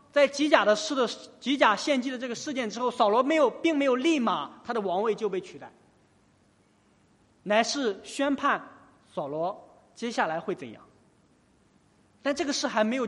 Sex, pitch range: male, 200-285 Hz